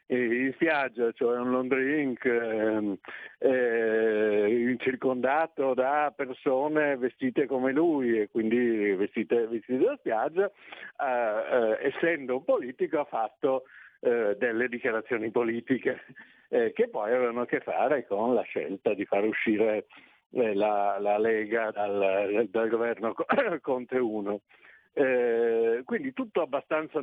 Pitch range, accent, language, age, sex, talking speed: 115-140 Hz, native, Italian, 60-79, male, 120 wpm